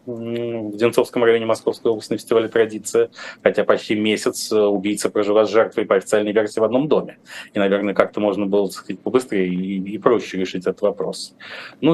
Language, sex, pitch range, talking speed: Russian, male, 105-130 Hz, 165 wpm